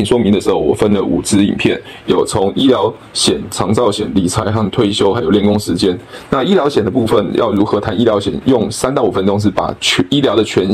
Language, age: Chinese, 20-39